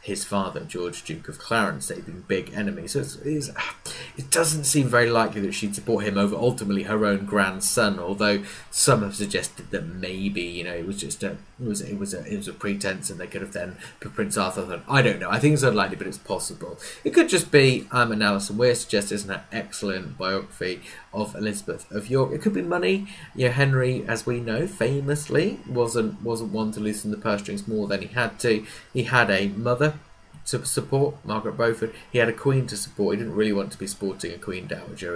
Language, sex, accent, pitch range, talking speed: English, male, British, 100-130 Hz, 220 wpm